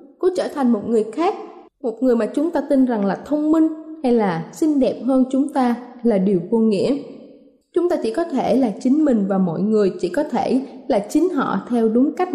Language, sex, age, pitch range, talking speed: Vietnamese, female, 20-39, 235-285 Hz, 230 wpm